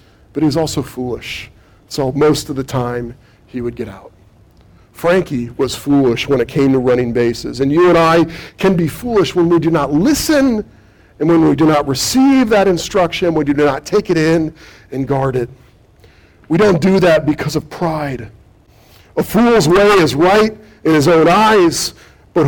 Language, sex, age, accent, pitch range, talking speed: English, male, 40-59, American, 115-175 Hz, 185 wpm